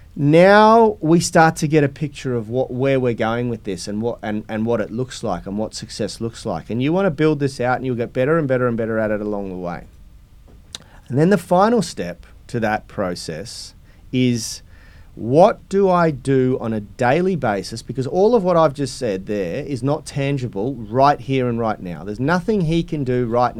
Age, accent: 30-49, Australian